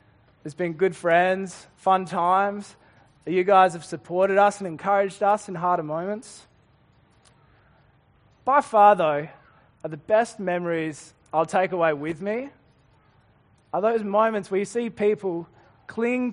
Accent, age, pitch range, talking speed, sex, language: Australian, 20-39, 140-200 Hz, 140 wpm, male, English